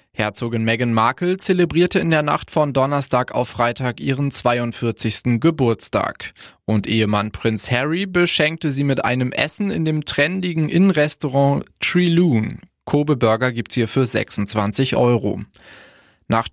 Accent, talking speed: German, 130 wpm